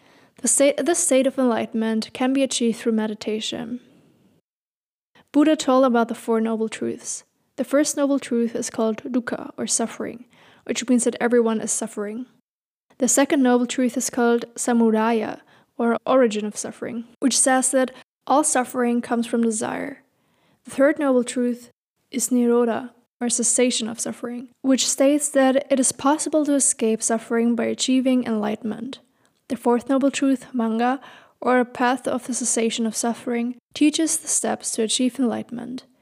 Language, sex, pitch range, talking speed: English, female, 230-265 Hz, 155 wpm